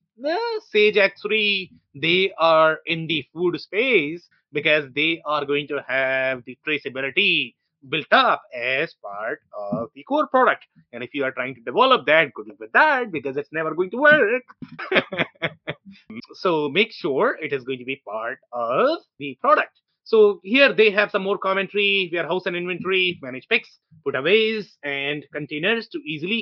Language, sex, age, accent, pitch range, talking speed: English, male, 30-49, Indian, 155-210 Hz, 165 wpm